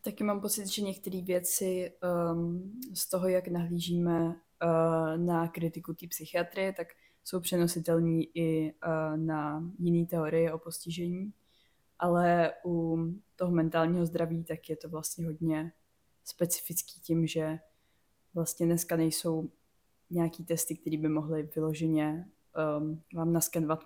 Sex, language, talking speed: female, Czech, 120 wpm